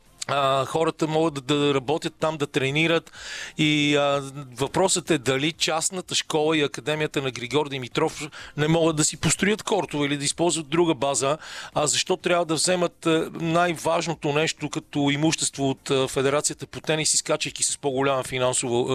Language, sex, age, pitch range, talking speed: Bulgarian, male, 40-59, 135-160 Hz, 150 wpm